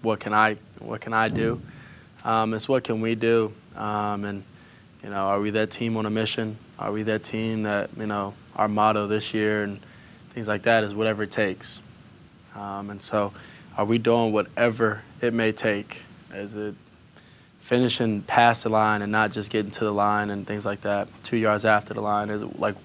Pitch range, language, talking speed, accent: 105-115 Hz, English, 205 wpm, American